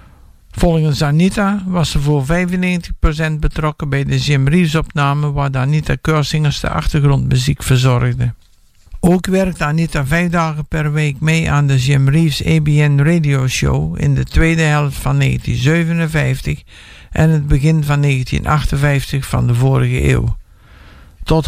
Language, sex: English, male